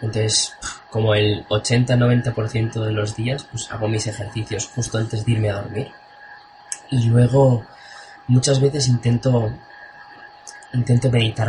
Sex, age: male, 20-39